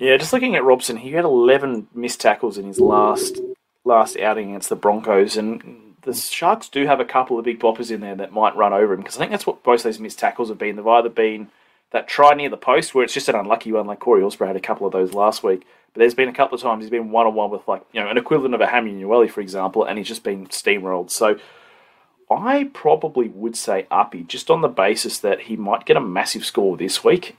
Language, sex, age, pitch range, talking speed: English, male, 30-49, 100-135 Hz, 255 wpm